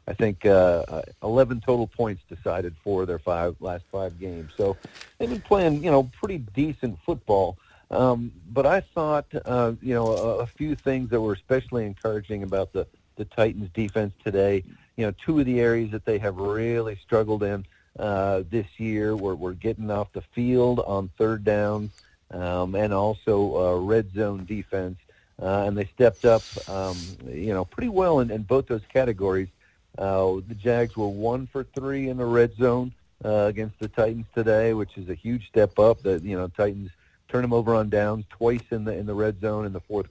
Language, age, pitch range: English, 50-69, 95-120 Hz